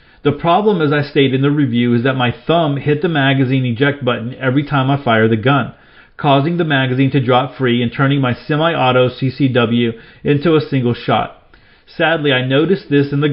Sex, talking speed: male, 200 wpm